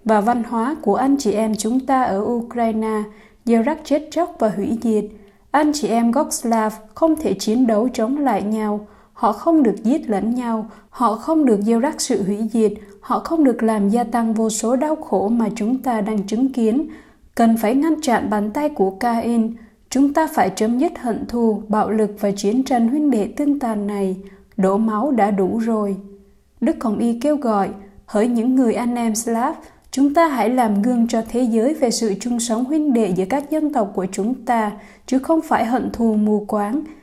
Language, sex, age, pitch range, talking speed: Vietnamese, female, 20-39, 215-260 Hz, 205 wpm